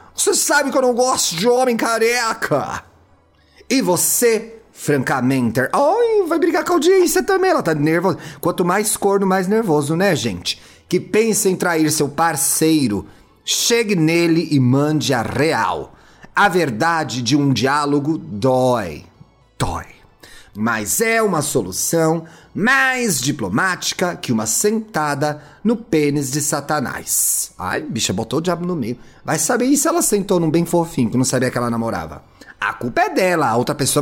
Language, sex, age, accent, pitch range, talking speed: Portuguese, male, 30-49, Brazilian, 135-205 Hz, 160 wpm